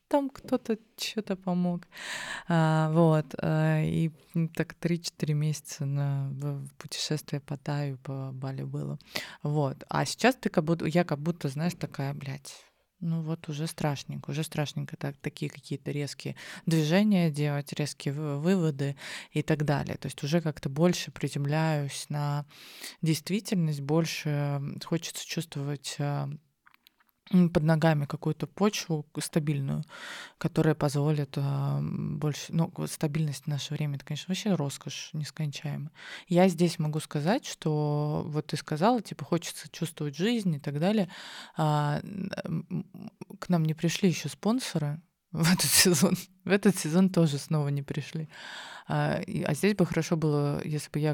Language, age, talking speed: Russian, 20-39, 135 wpm